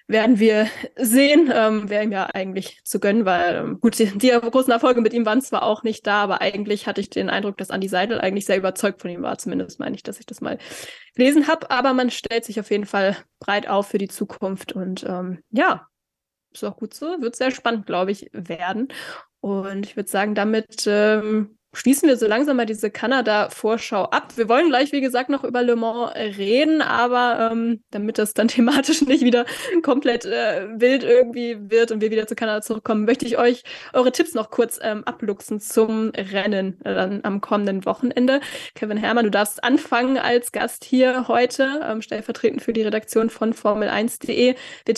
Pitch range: 210-250 Hz